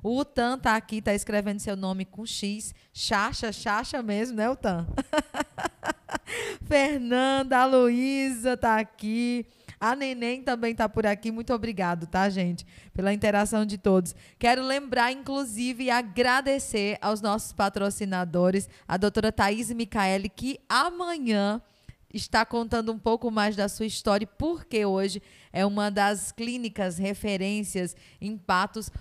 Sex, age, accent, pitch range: female, 20-39, Brazilian, 195-245 Hz